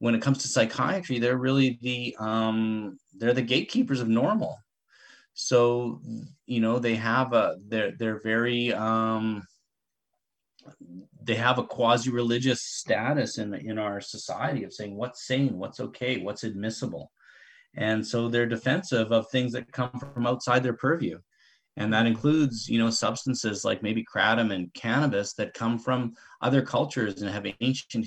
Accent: American